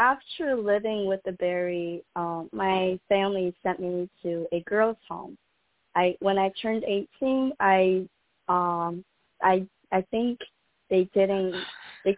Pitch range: 180-220 Hz